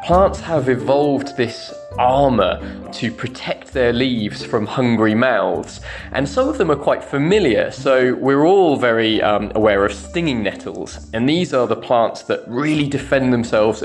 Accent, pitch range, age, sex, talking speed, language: British, 120-160 Hz, 20-39, male, 160 wpm, English